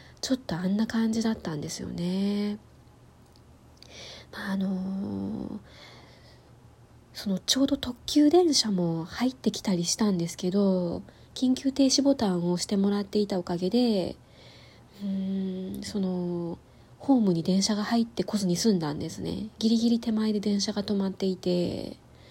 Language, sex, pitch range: Japanese, female, 180-230 Hz